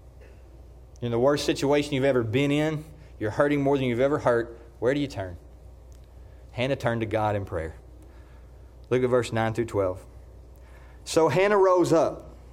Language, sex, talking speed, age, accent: English, male, 170 wpm, 30-49, American